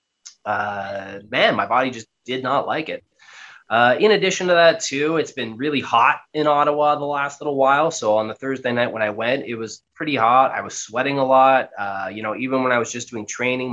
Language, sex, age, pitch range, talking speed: English, male, 20-39, 110-150 Hz, 225 wpm